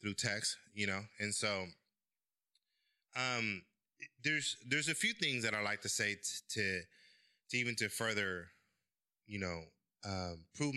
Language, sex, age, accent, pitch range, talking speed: English, male, 20-39, American, 100-130 Hz, 145 wpm